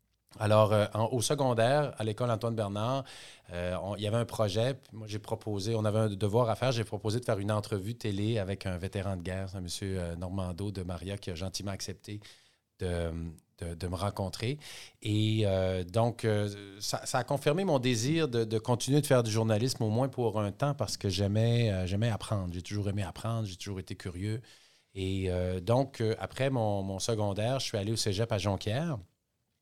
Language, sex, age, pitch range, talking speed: French, male, 30-49, 100-125 Hz, 195 wpm